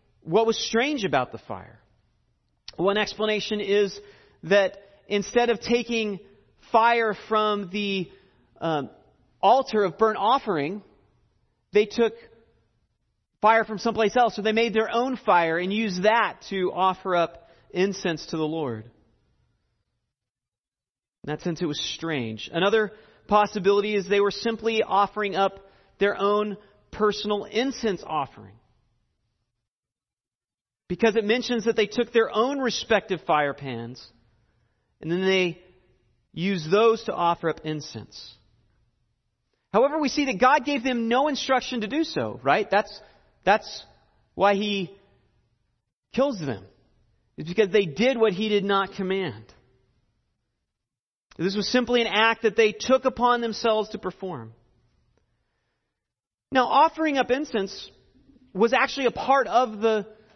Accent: American